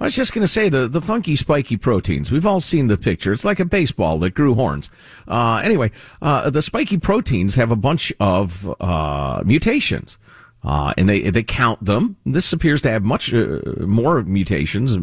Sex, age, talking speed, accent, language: male, 50-69, 195 wpm, American, English